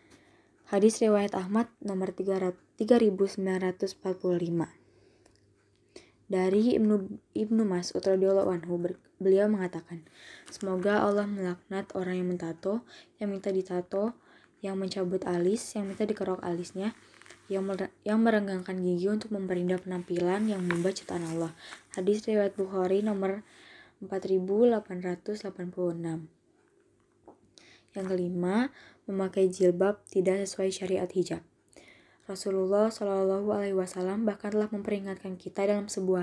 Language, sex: Indonesian, female